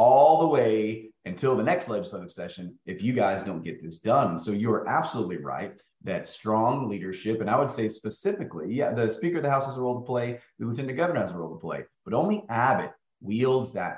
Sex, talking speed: male, 225 wpm